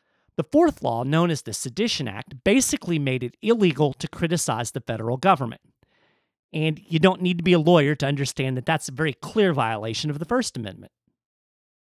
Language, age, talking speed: English, 40-59, 190 wpm